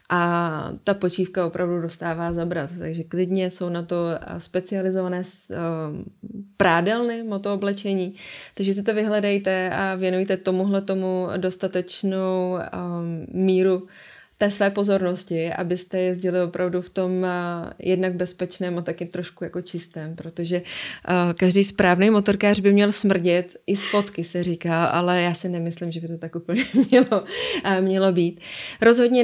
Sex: female